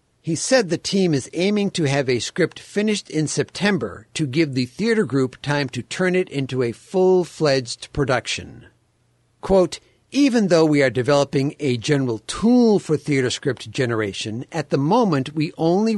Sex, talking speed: male, 165 wpm